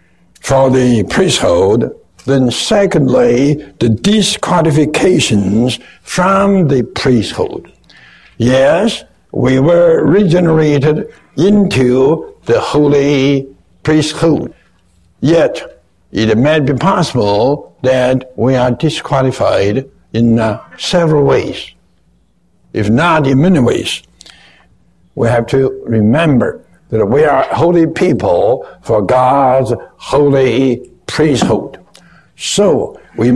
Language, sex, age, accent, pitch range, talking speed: English, male, 60-79, American, 120-160 Hz, 90 wpm